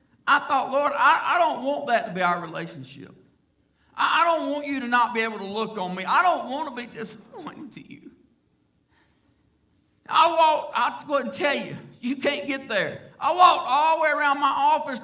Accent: American